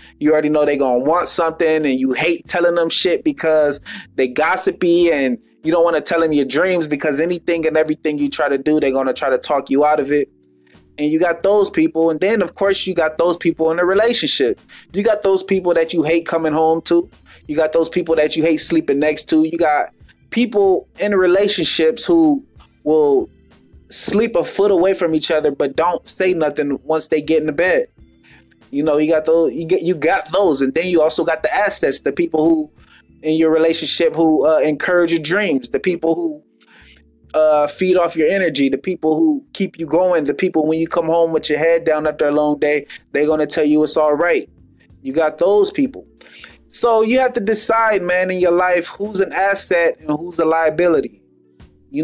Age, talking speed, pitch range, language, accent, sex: 20-39, 215 wpm, 155-185 Hz, English, American, male